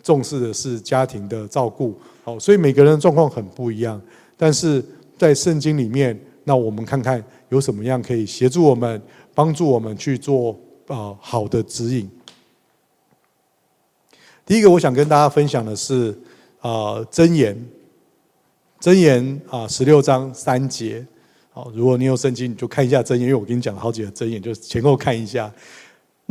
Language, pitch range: Chinese, 115-145 Hz